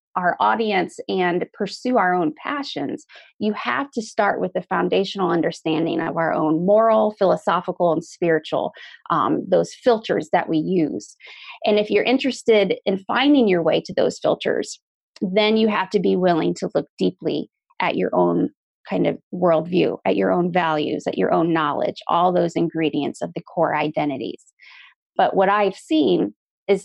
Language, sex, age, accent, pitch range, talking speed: English, female, 30-49, American, 170-225 Hz, 165 wpm